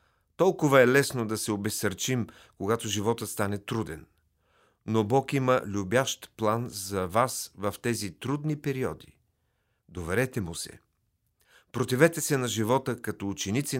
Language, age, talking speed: Bulgarian, 40-59, 130 wpm